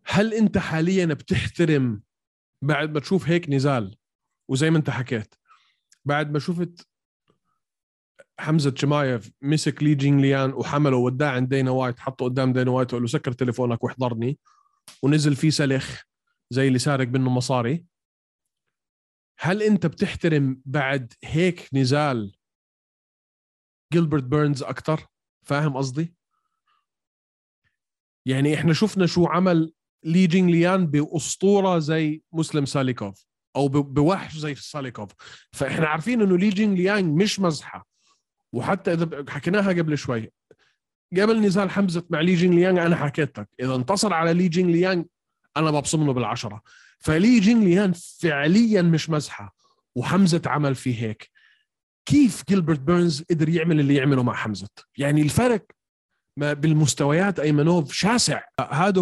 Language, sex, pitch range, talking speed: Arabic, male, 135-175 Hz, 125 wpm